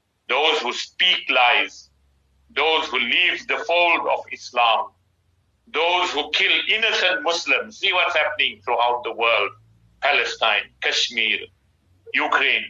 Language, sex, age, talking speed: English, male, 60-79, 120 wpm